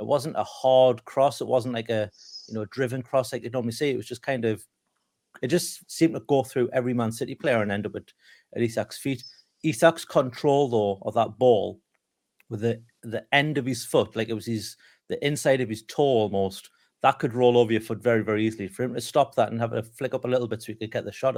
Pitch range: 105-130 Hz